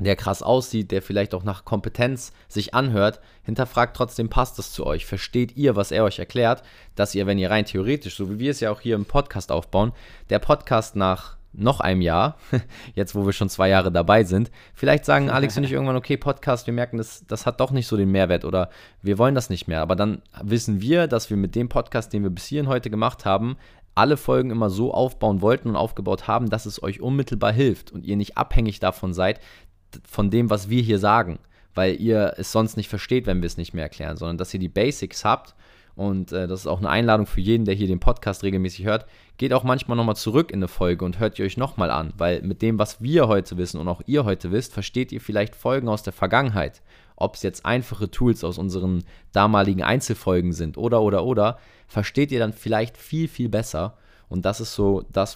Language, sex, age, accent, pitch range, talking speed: German, male, 20-39, German, 95-115 Hz, 225 wpm